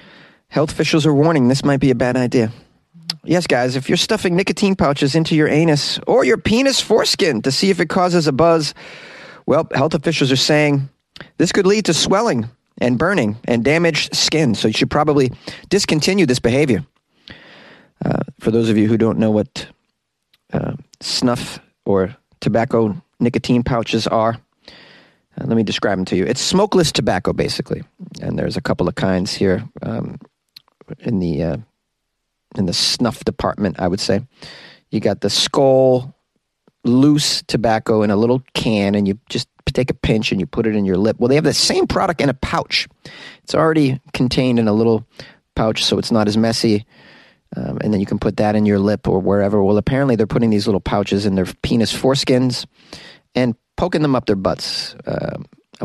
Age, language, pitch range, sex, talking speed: 30-49, English, 110-150 Hz, male, 185 wpm